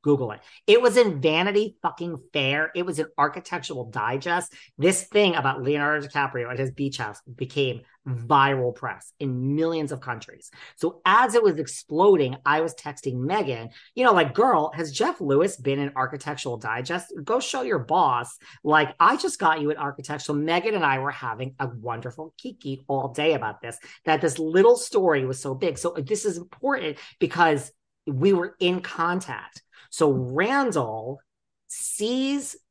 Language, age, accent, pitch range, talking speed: English, 40-59, American, 135-175 Hz, 170 wpm